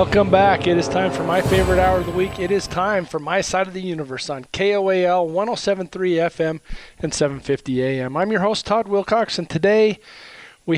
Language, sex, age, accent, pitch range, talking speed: English, male, 40-59, American, 135-175 Hz, 200 wpm